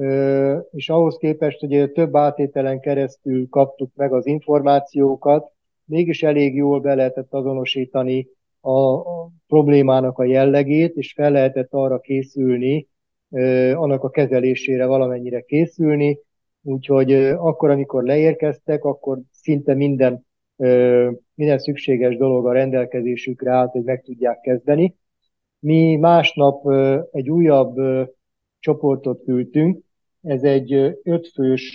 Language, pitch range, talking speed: Hungarian, 125-145 Hz, 110 wpm